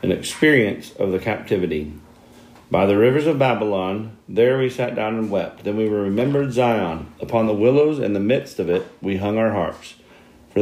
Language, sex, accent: English, male, American